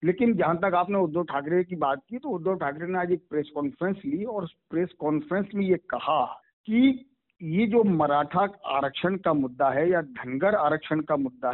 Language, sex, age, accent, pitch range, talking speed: Hindi, male, 50-69, native, 145-195 Hz, 190 wpm